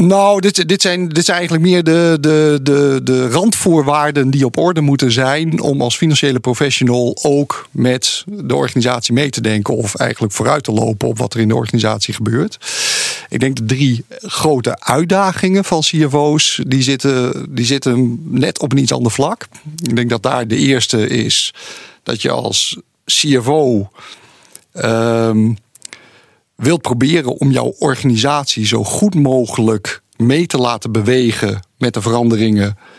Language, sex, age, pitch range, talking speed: Dutch, male, 50-69, 115-155 Hz, 145 wpm